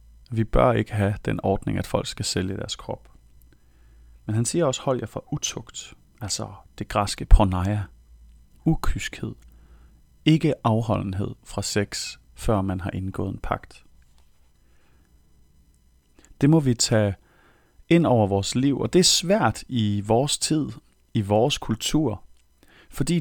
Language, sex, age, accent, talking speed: Danish, male, 30-49, native, 140 wpm